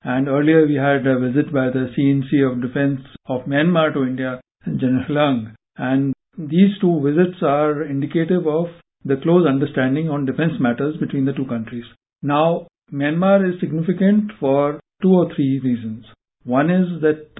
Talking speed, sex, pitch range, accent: 160 wpm, male, 135-160 Hz, Indian